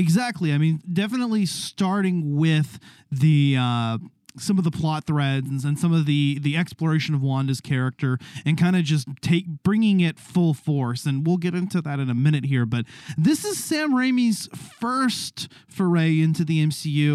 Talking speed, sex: 175 wpm, male